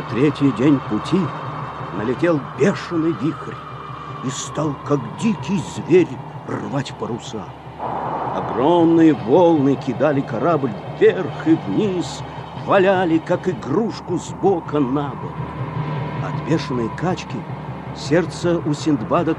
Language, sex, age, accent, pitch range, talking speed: Russian, male, 50-69, native, 135-165 Hz, 100 wpm